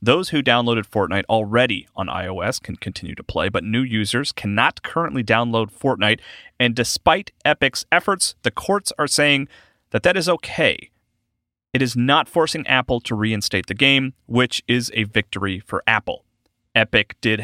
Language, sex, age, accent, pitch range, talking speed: English, male, 30-49, American, 105-130 Hz, 160 wpm